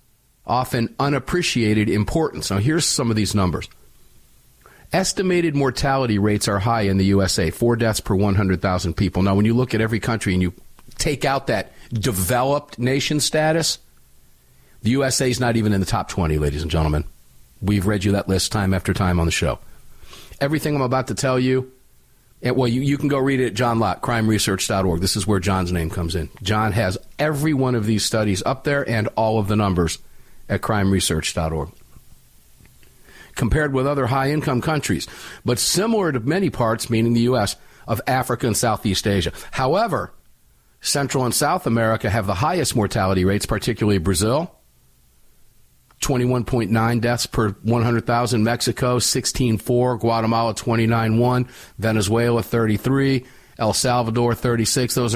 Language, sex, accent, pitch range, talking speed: English, male, American, 100-130 Hz, 160 wpm